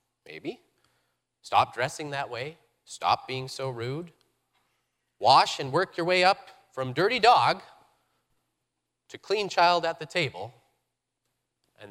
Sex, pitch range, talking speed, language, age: male, 115-145 Hz, 125 wpm, English, 30-49